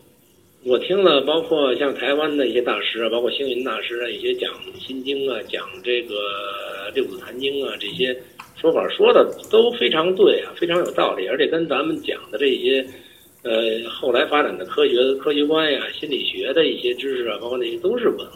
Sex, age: male, 60-79